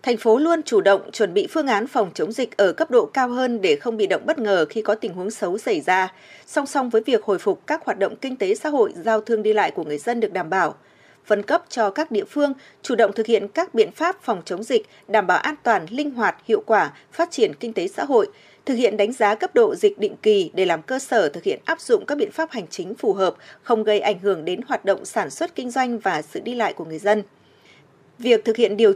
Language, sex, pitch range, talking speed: Vietnamese, female, 210-330 Hz, 265 wpm